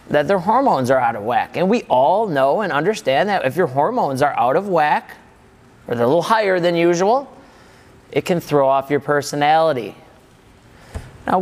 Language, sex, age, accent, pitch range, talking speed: English, male, 30-49, American, 150-205 Hz, 185 wpm